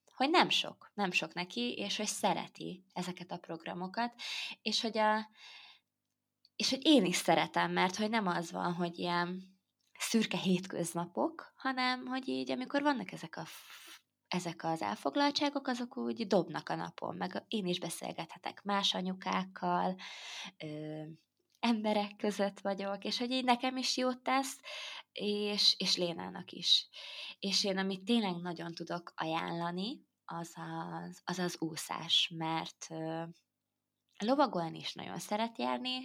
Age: 20-39